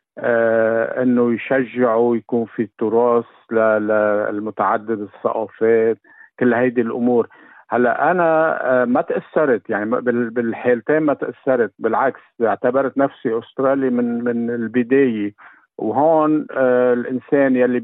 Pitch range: 115-130 Hz